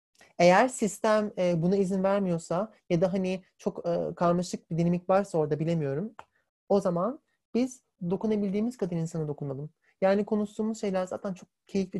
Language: Turkish